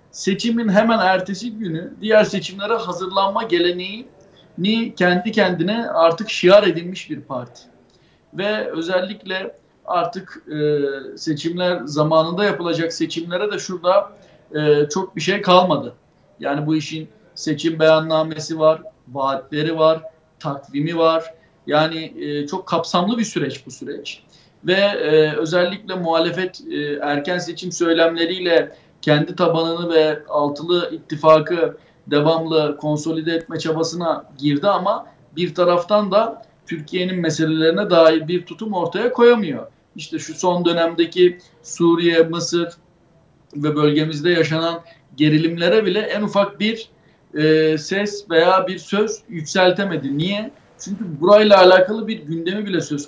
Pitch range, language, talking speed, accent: 160-195 Hz, Turkish, 115 wpm, native